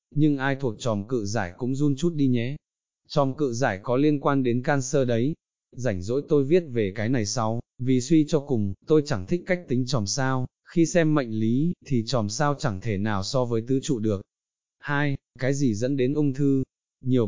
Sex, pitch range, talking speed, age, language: male, 115-145 Hz, 215 wpm, 20-39, Vietnamese